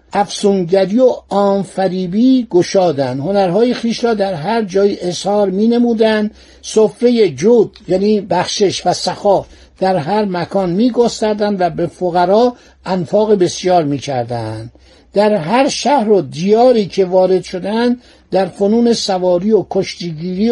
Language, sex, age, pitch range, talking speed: Persian, male, 60-79, 180-225 Hz, 125 wpm